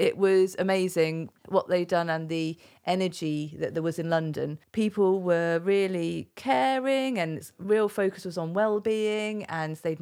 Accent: British